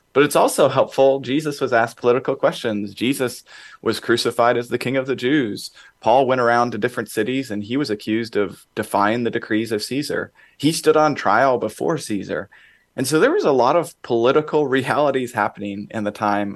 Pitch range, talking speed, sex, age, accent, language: 100-120 Hz, 190 wpm, male, 30-49, American, English